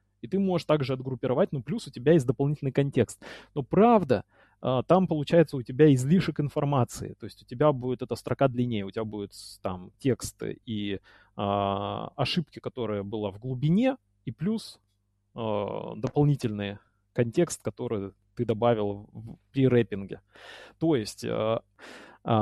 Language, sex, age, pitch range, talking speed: Russian, male, 20-39, 110-150 Hz, 130 wpm